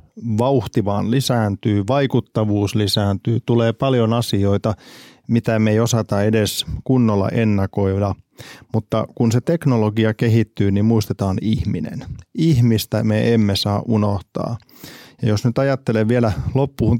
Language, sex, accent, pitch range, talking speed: Finnish, male, native, 105-120 Hz, 115 wpm